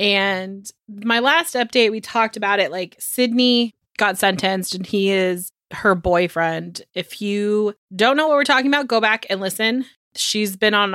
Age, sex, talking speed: 20-39, female, 175 wpm